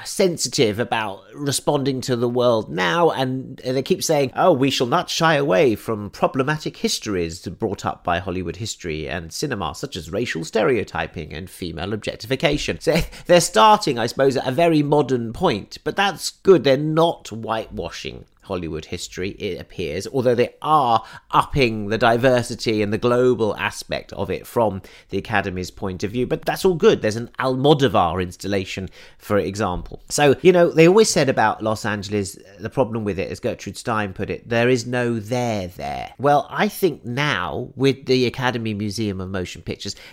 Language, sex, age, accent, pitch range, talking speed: English, male, 40-59, British, 100-145 Hz, 175 wpm